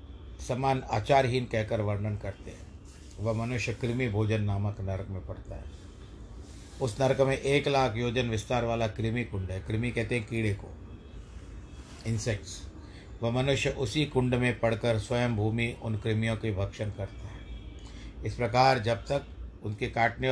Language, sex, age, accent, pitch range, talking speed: Hindi, male, 50-69, native, 100-120 Hz, 155 wpm